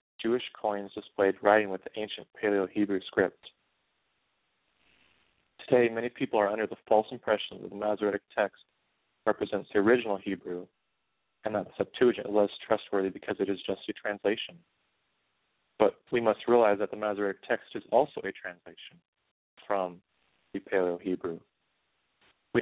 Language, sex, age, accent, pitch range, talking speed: English, male, 30-49, American, 100-110 Hz, 145 wpm